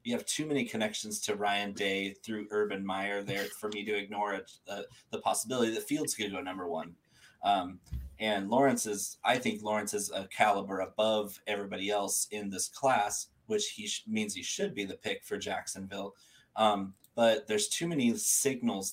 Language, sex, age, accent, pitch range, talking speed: English, male, 20-39, American, 100-115 Hz, 185 wpm